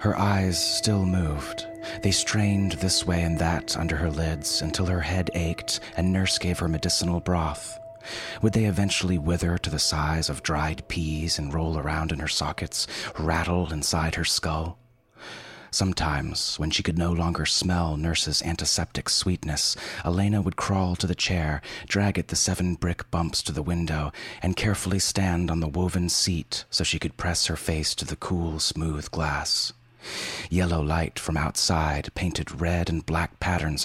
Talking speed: 170 wpm